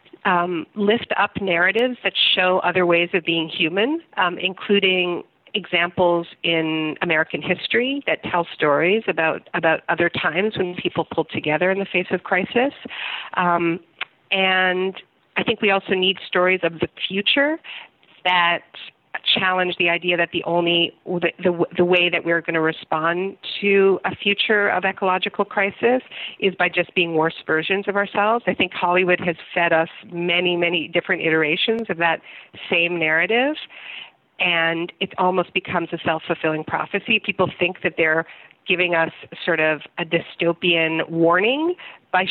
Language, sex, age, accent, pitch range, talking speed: English, female, 40-59, American, 165-195 Hz, 150 wpm